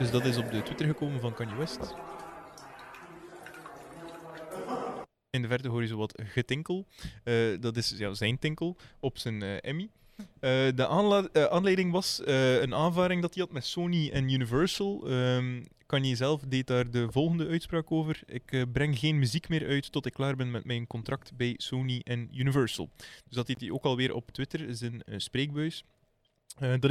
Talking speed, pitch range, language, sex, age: 185 wpm, 120-145 Hz, Dutch, male, 20-39